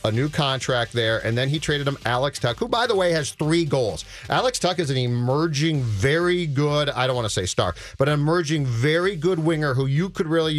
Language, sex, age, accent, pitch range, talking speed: English, male, 40-59, American, 125-165 Hz, 230 wpm